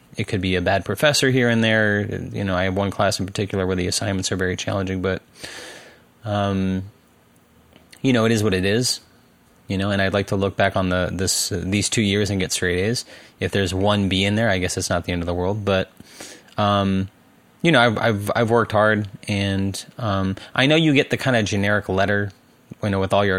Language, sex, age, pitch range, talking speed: English, male, 20-39, 95-115 Hz, 230 wpm